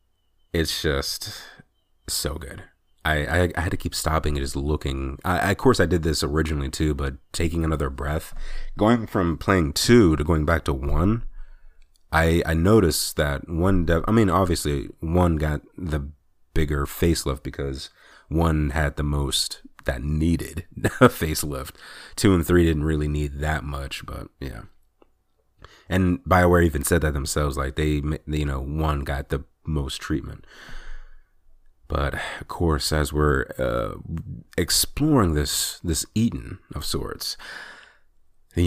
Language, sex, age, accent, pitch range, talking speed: English, male, 30-49, American, 75-90 Hz, 145 wpm